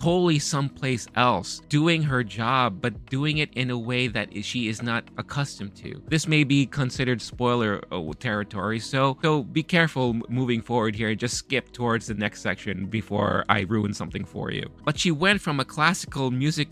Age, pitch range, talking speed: 20-39, 110-140 Hz, 185 wpm